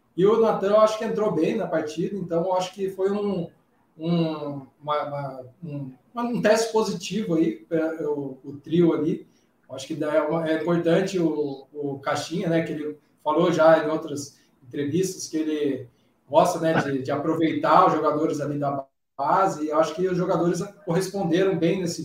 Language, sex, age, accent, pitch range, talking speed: Portuguese, male, 20-39, Brazilian, 150-180 Hz, 175 wpm